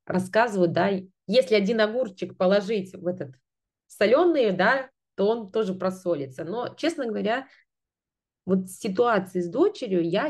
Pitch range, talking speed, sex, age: 170-210 Hz, 135 wpm, female, 20-39